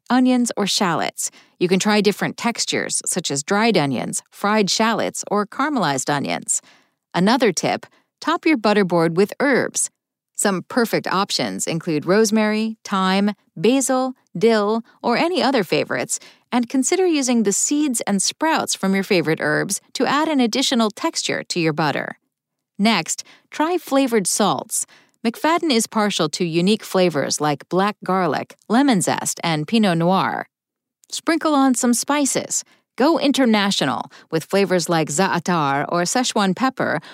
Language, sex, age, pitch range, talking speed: English, female, 40-59, 185-255 Hz, 140 wpm